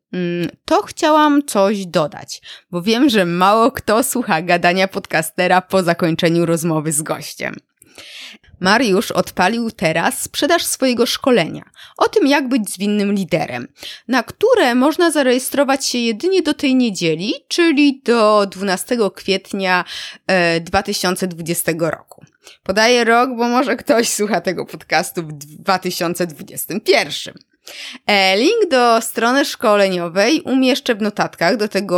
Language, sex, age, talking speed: Polish, female, 20-39, 120 wpm